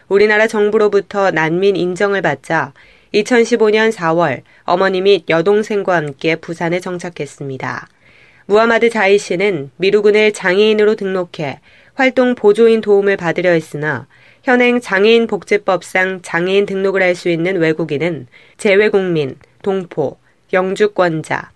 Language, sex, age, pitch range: Korean, female, 20-39, 170-215 Hz